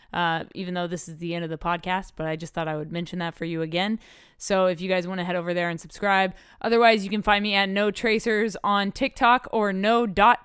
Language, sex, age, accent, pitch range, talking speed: English, female, 20-39, American, 180-220 Hz, 260 wpm